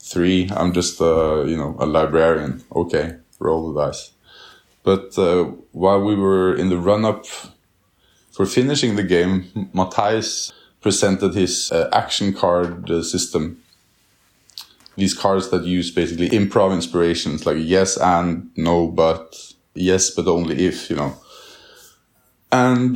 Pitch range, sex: 90-110 Hz, male